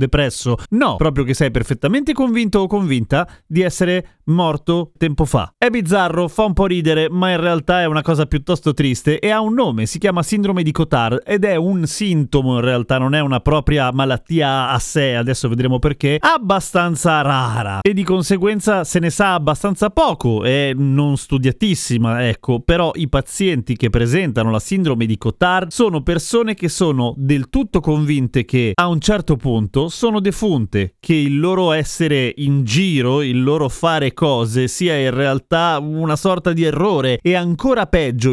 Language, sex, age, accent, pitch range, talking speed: Italian, male, 30-49, native, 135-180 Hz, 170 wpm